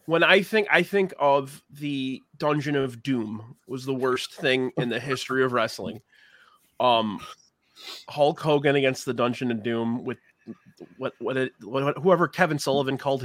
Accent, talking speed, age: American, 165 wpm, 30-49